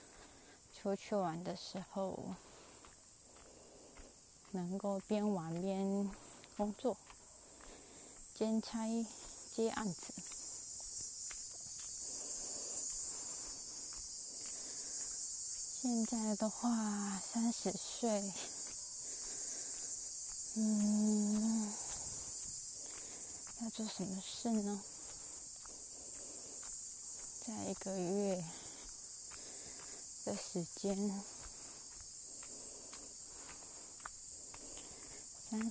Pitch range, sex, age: 195-220 Hz, female, 20-39